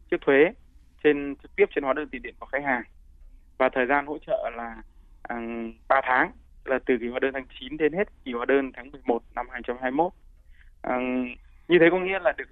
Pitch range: 115-145 Hz